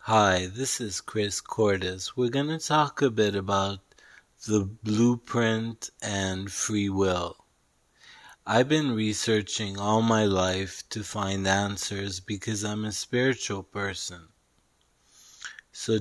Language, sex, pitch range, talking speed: English, male, 100-115 Hz, 120 wpm